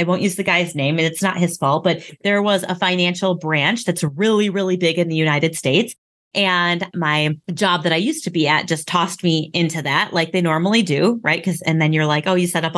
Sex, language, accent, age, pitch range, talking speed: female, English, American, 30-49, 160-200 Hz, 250 wpm